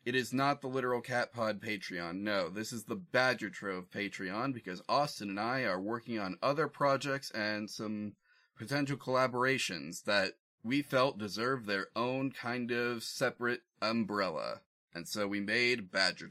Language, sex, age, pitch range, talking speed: English, male, 30-49, 105-135 Hz, 155 wpm